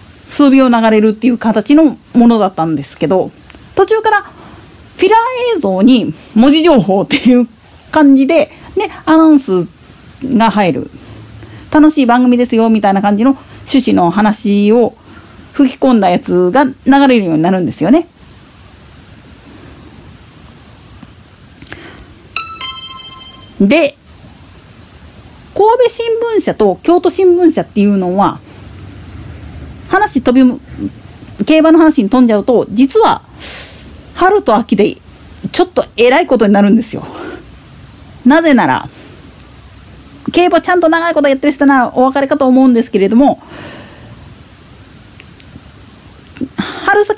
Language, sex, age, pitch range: Japanese, female, 40-59, 210-315 Hz